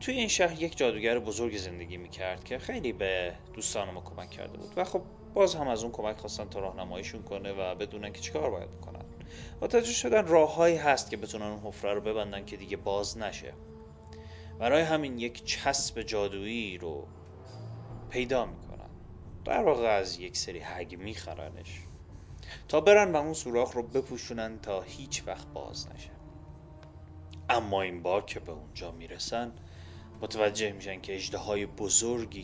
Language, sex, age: Persian, male, 30-49